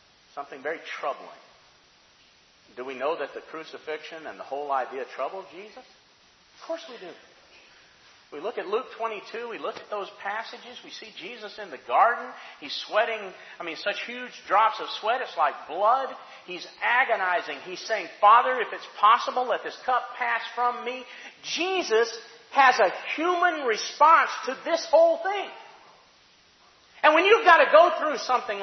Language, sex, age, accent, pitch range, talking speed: English, male, 40-59, American, 250-355 Hz, 165 wpm